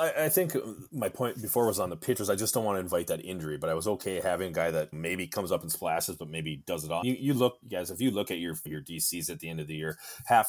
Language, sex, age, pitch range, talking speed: English, male, 30-49, 85-115 Hz, 305 wpm